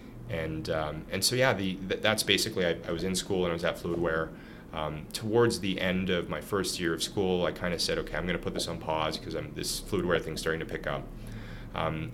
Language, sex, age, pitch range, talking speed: English, male, 30-49, 80-95 Hz, 245 wpm